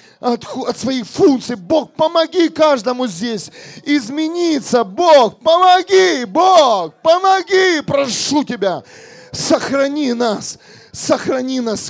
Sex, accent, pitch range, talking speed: male, native, 235-290 Hz, 90 wpm